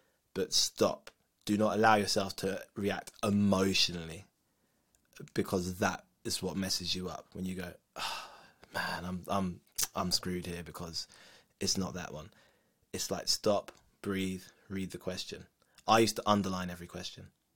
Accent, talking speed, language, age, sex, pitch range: British, 150 wpm, English, 20-39, male, 95-115 Hz